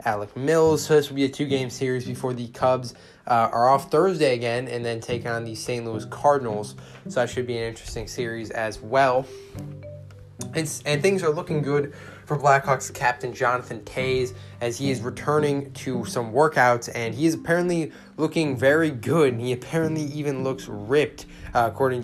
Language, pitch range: English, 120-145 Hz